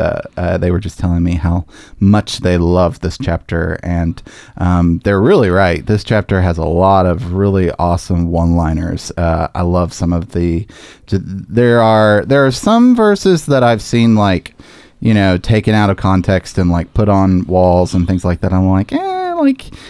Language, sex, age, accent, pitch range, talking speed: English, male, 30-49, American, 85-110 Hz, 185 wpm